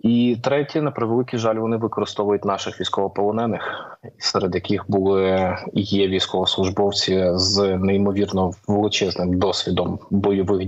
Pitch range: 95-110 Hz